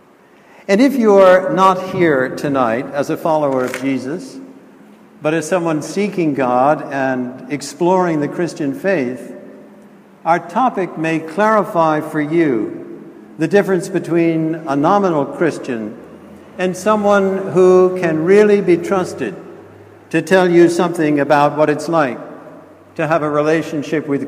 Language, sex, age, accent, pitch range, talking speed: English, male, 60-79, American, 150-190 Hz, 135 wpm